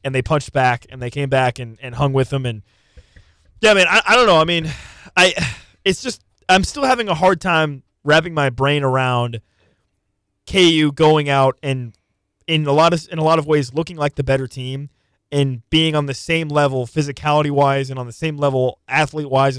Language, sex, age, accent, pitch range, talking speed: English, male, 20-39, American, 120-160 Hz, 210 wpm